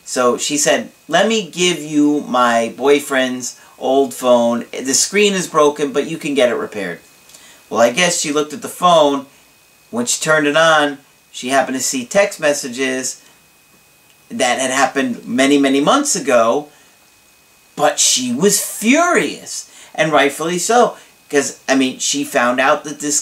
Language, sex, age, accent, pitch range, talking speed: English, male, 40-59, American, 125-180 Hz, 160 wpm